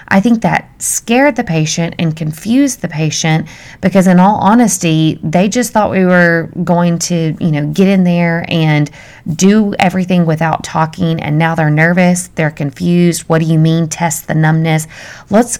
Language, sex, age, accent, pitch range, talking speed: English, female, 30-49, American, 160-200 Hz, 175 wpm